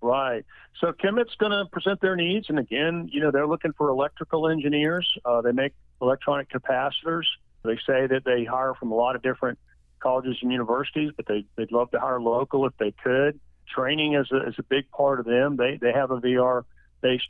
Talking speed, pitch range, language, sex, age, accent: 205 wpm, 120-140 Hz, English, male, 50-69, American